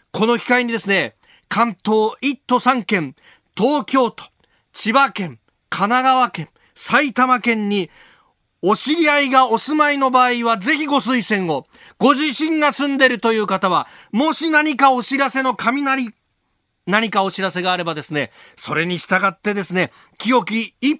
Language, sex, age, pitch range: Japanese, male, 40-59, 190-280 Hz